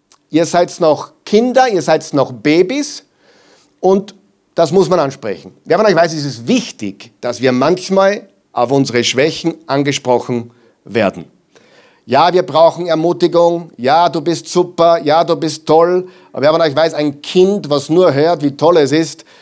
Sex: male